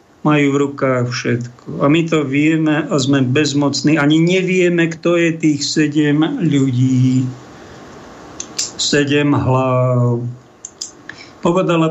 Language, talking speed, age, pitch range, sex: Slovak, 105 wpm, 50-69, 140-155 Hz, male